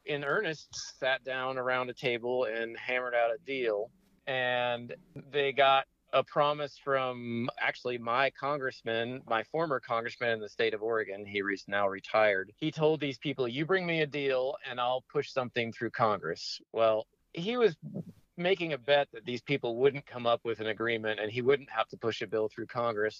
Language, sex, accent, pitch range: English, male, American, 120-150 Hz